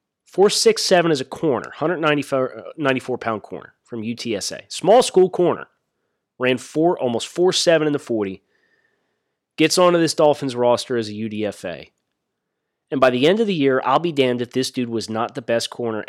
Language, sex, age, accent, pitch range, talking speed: English, male, 30-49, American, 120-165 Hz, 185 wpm